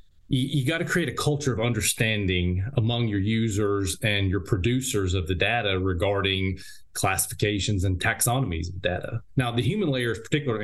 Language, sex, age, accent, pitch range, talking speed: English, male, 30-49, American, 95-125 Hz, 165 wpm